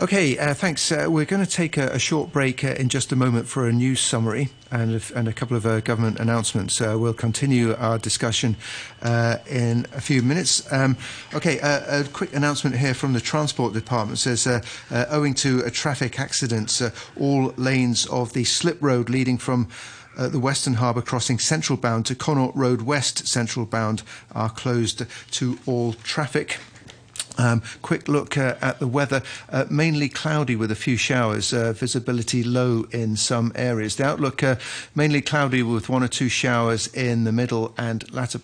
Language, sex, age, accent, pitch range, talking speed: English, male, 40-59, British, 115-140 Hz, 190 wpm